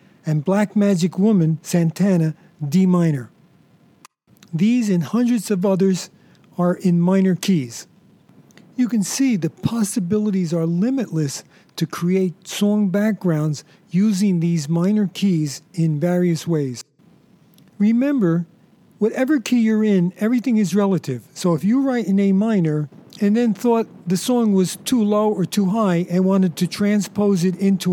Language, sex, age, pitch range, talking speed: English, male, 50-69, 170-210 Hz, 140 wpm